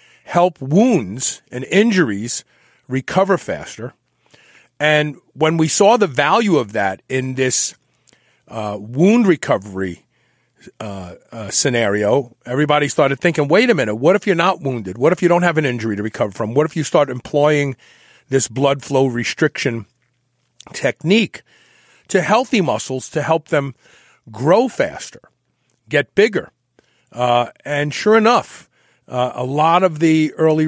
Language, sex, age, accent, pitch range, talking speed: English, male, 50-69, American, 125-190 Hz, 145 wpm